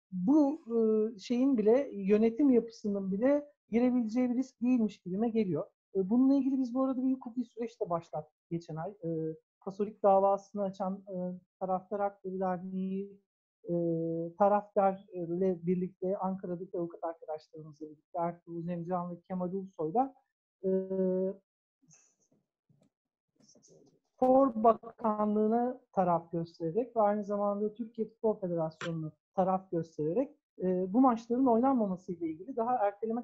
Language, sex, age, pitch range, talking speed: Turkish, male, 50-69, 185-245 Hz, 110 wpm